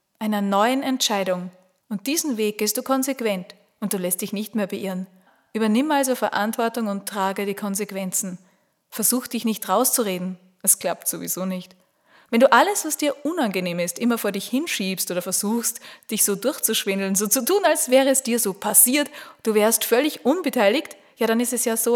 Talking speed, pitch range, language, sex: 180 wpm, 195-245 Hz, German, female